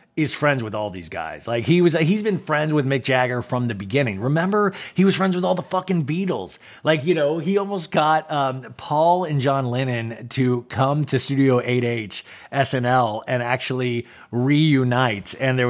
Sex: male